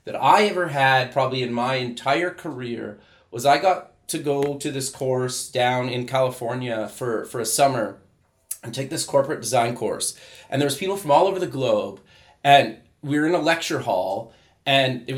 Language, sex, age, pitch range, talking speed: English, male, 30-49, 125-160 Hz, 190 wpm